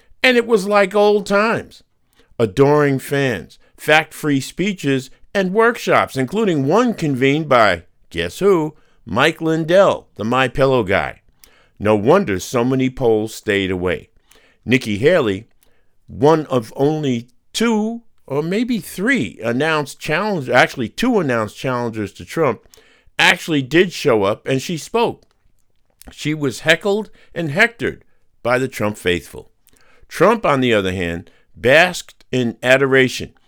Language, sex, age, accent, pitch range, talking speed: English, male, 50-69, American, 115-170 Hz, 125 wpm